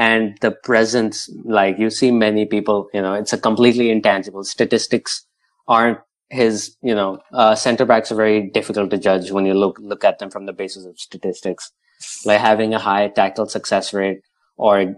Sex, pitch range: male, 100-110 Hz